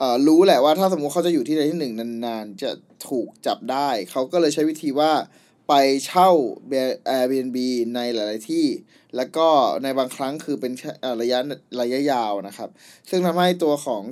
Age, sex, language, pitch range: 20-39, male, Thai, 130-160 Hz